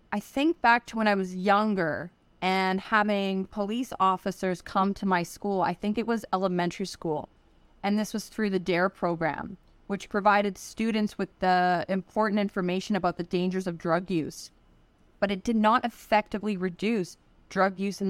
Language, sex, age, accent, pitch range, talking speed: English, female, 30-49, American, 185-220 Hz, 170 wpm